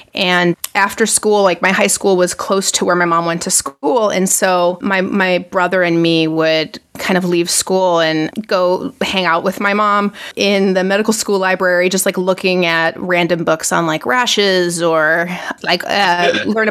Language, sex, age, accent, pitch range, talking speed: English, female, 30-49, American, 170-205 Hz, 190 wpm